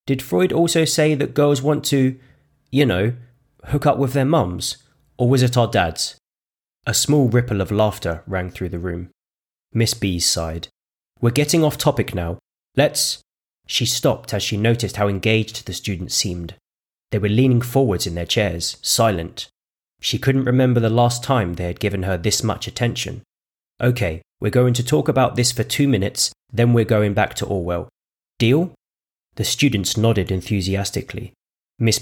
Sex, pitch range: male, 95-125 Hz